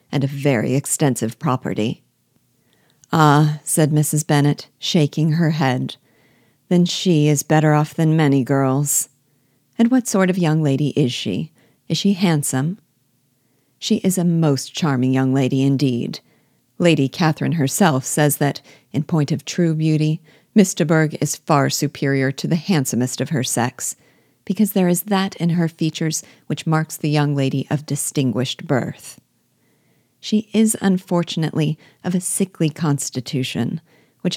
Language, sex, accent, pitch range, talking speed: English, female, American, 135-170 Hz, 145 wpm